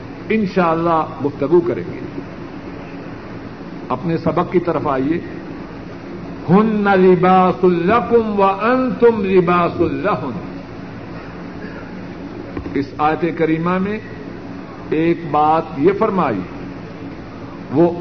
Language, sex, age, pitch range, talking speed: Urdu, male, 60-79, 160-220 Hz, 95 wpm